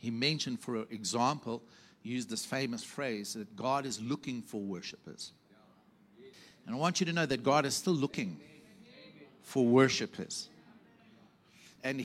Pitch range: 130-175 Hz